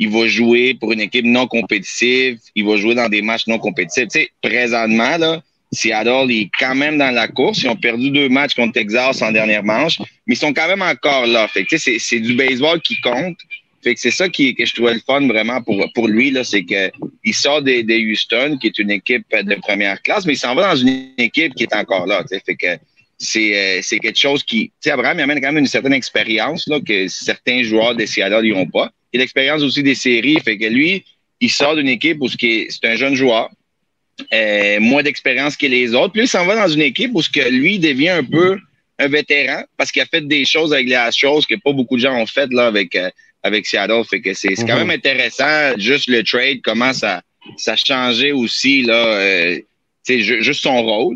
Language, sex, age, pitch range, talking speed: French, male, 30-49, 110-140 Hz, 230 wpm